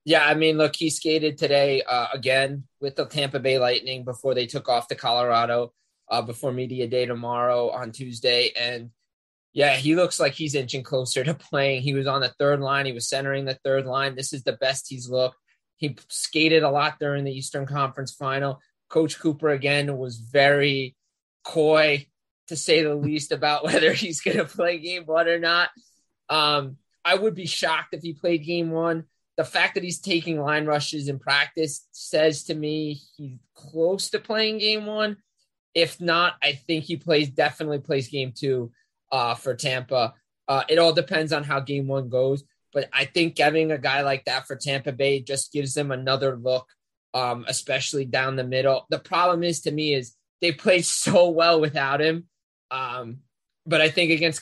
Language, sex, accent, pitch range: English, male, American, 135-160 Hz